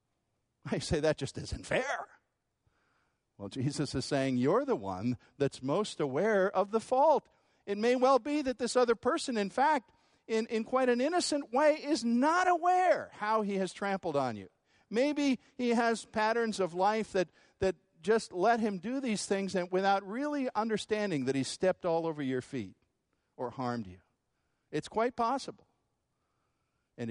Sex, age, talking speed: male, 50-69, 170 wpm